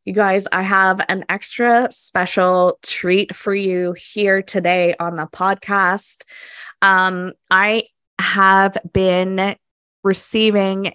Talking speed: 110 wpm